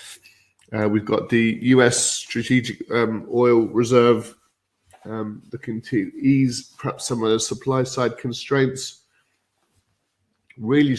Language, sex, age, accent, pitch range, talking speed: English, male, 20-39, British, 105-125 Hz, 110 wpm